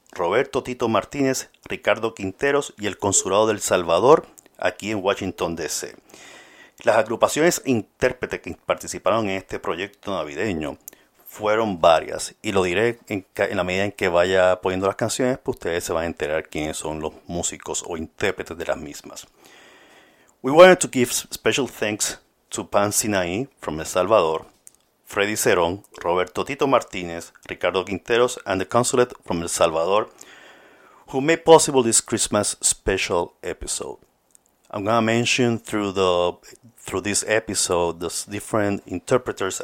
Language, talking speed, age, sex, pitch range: Spanish, 150 wpm, 50-69, male, 90-120 Hz